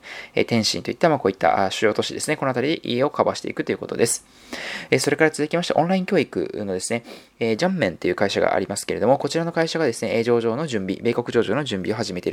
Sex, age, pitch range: male, 20-39, 115-160 Hz